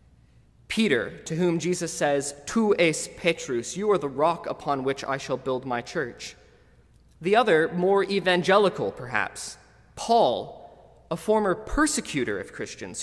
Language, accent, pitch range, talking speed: English, American, 135-185 Hz, 140 wpm